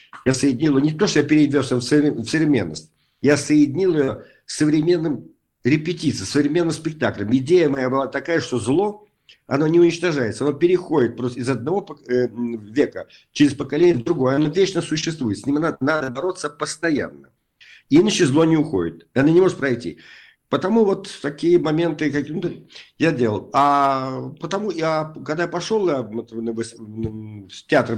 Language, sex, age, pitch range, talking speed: Russian, male, 50-69, 115-160 Hz, 150 wpm